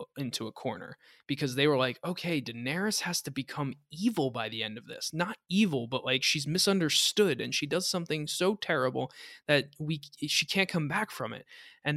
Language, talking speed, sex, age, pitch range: English, 195 wpm, male, 20-39, 125-170 Hz